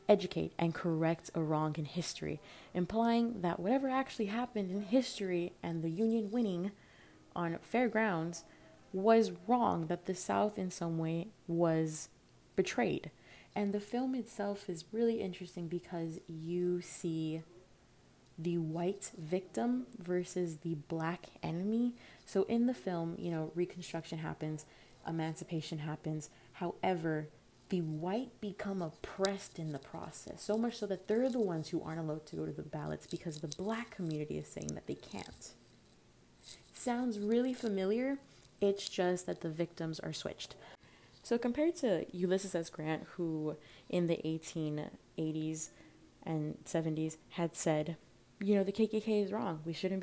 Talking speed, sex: 145 wpm, female